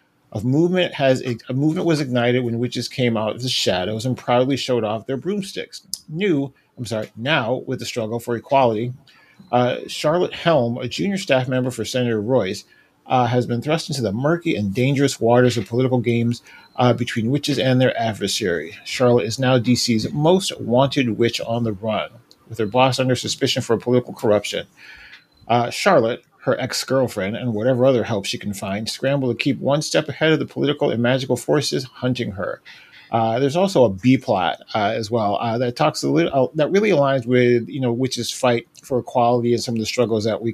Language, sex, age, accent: English, male, 40-59, American